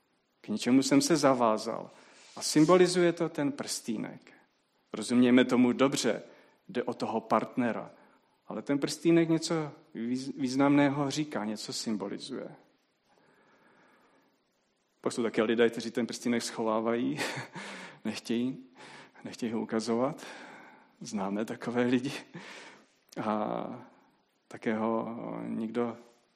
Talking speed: 100 wpm